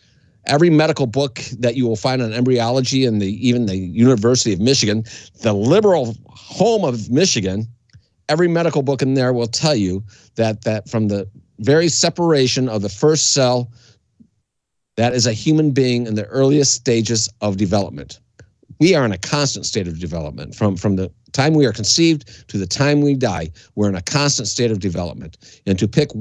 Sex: male